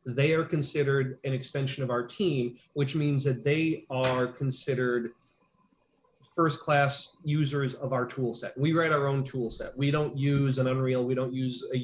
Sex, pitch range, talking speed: male, 125-150 Hz, 180 wpm